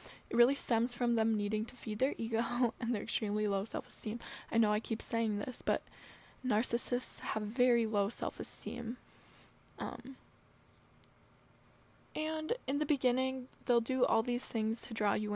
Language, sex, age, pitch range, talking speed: English, female, 10-29, 215-245 Hz, 155 wpm